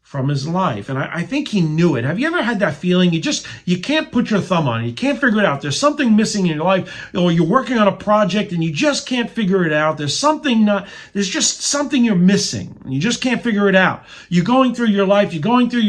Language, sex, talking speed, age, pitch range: English, male, 270 wpm, 40-59, 165-225 Hz